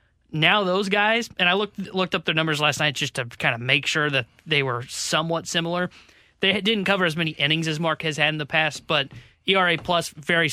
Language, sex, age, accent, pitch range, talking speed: English, male, 20-39, American, 145-180 Hz, 230 wpm